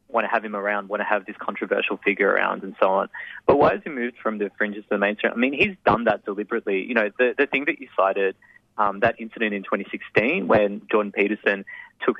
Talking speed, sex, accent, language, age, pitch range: 240 wpm, male, Australian, English, 20-39, 105-115 Hz